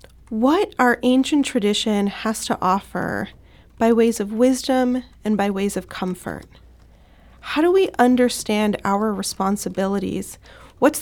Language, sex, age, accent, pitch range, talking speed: English, female, 30-49, American, 220-270 Hz, 125 wpm